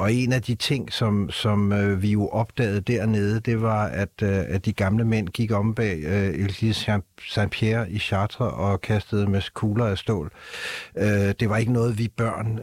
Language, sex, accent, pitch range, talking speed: Danish, male, native, 100-115 Hz, 200 wpm